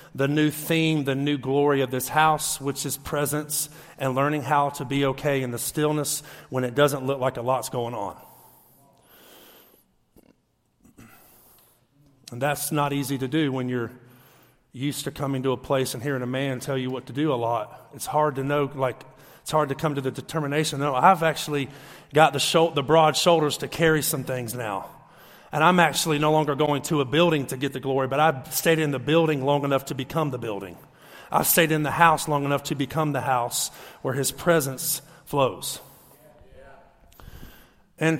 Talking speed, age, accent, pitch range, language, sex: 190 wpm, 40-59, American, 135-155 Hz, English, male